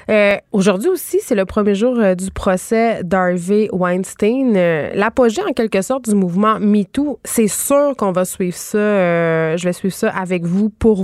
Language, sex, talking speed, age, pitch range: French, female, 185 wpm, 20-39, 180-215 Hz